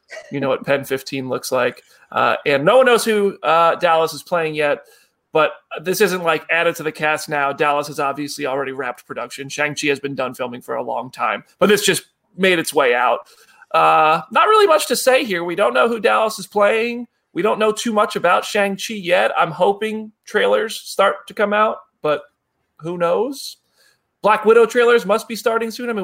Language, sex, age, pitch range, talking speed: English, male, 30-49, 150-215 Hz, 210 wpm